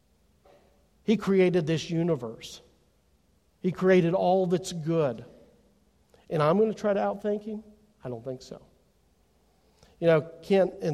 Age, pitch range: 50-69, 135-180 Hz